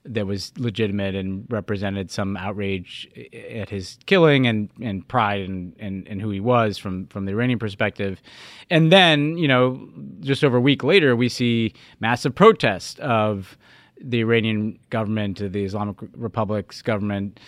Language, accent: English, American